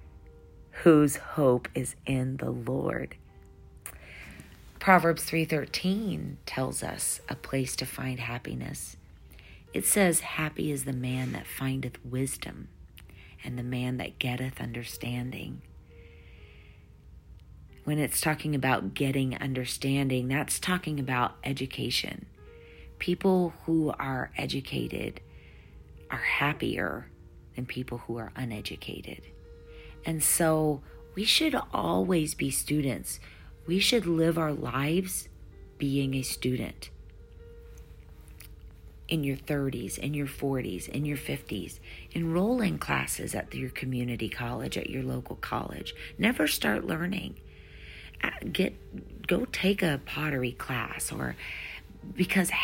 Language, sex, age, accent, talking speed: English, female, 40-59, American, 110 wpm